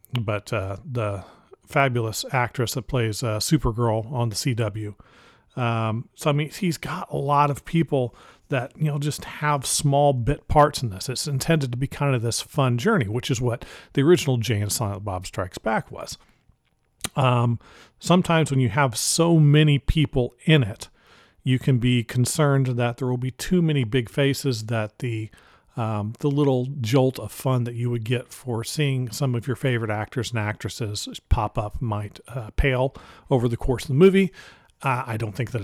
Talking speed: 185 wpm